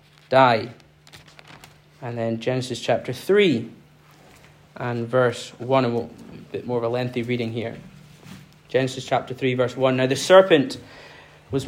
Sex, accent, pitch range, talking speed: male, British, 135-185 Hz, 140 wpm